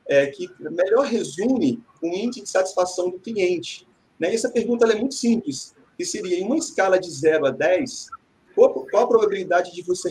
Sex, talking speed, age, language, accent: male, 200 wpm, 40-59, Portuguese, Brazilian